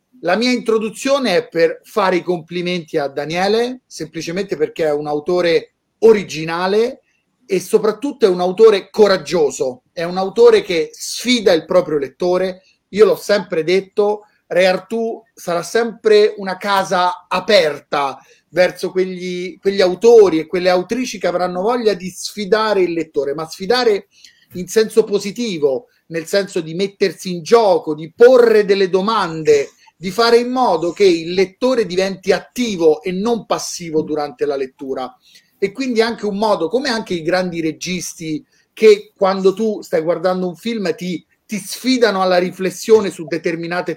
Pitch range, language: 180-225 Hz, Italian